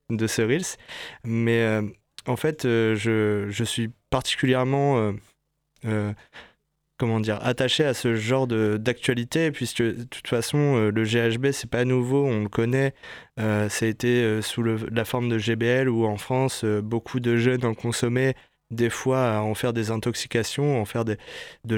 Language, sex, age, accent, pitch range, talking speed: French, male, 20-39, French, 110-130 Hz, 185 wpm